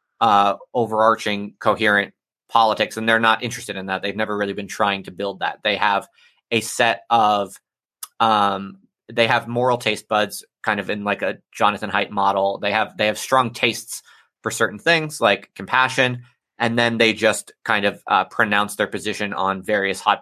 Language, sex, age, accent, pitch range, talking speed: English, male, 20-39, American, 100-115 Hz, 180 wpm